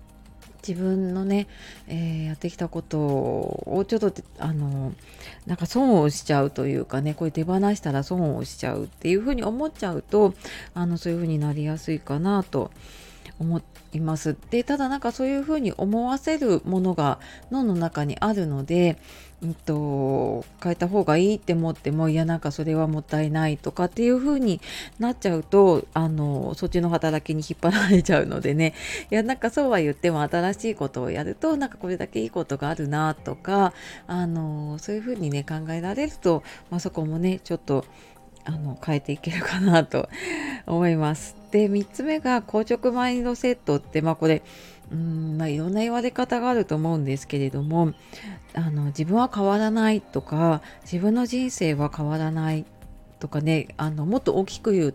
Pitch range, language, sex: 155-200 Hz, Japanese, female